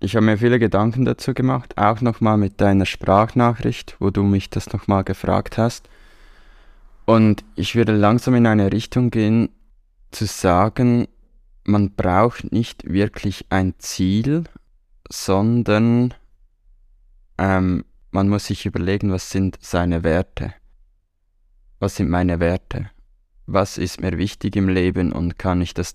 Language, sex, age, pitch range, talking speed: German, male, 20-39, 85-105 Hz, 140 wpm